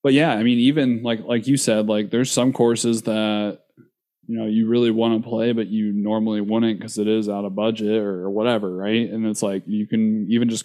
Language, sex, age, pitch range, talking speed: English, male, 20-39, 105-120 Hz, 230 wpm